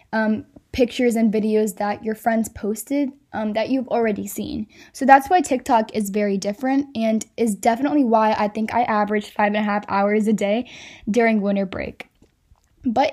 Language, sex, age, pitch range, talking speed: English, female, 10-29, 215-250 Hz, 180 wpm